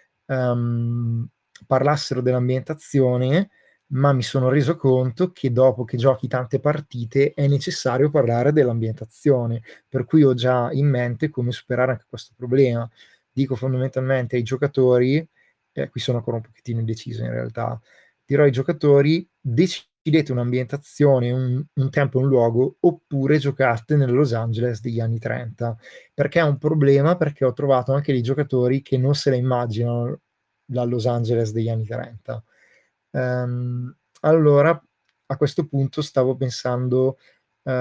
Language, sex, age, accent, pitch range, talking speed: Italian, male, 20-39, native, 120-140 Hz, 145 wpm